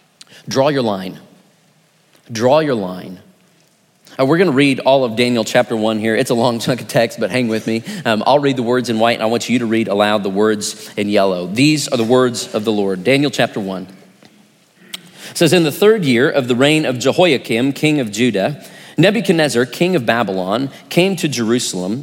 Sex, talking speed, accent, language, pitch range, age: male, 205 wpm, American, English, 115-155 Hz, 40-59